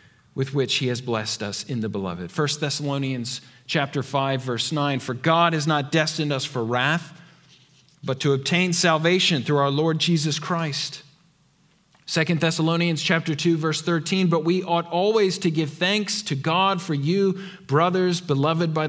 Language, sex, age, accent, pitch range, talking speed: English, male, 40-59, American, 145-175 Hz, 165 wpm